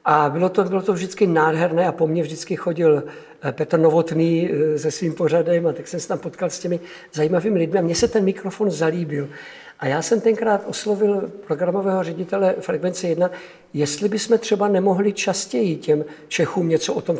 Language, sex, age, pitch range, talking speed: Czech, male, 60-79, 160-200 Hz, 180 wpm